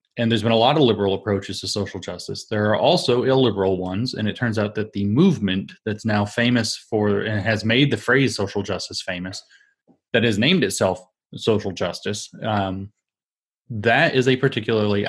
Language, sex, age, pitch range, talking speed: English, male, 30-49, 100-120 Hz, 185 wpm